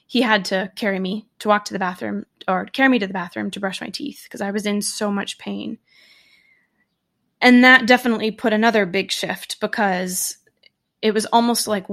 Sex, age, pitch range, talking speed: female, 20-39, 195-245 Hz, 195 wpm